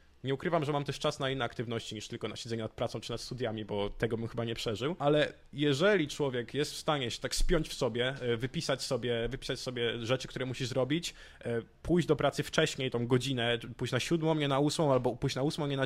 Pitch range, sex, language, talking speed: 125-155 Hz, male, Polish, 225 wpm